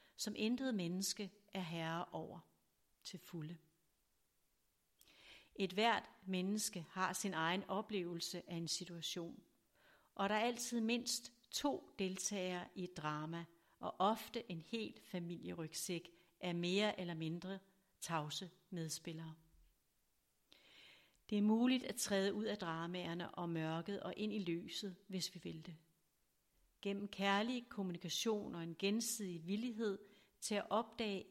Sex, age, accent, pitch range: female, 60-79, native, 175-210 Hz